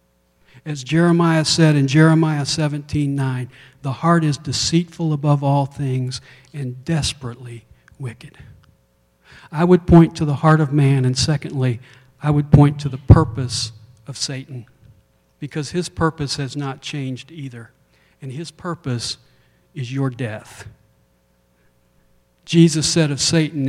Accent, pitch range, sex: American, 115-150 Hz, male